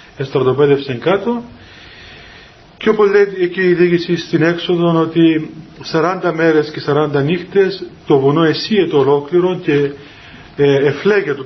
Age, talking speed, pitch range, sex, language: 40-59, 115 wpm, 140-175 Hz, male, Greek